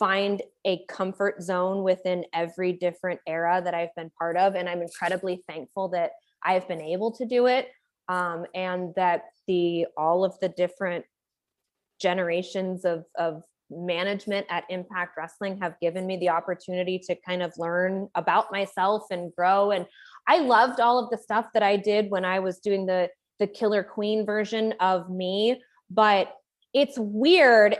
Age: 20-39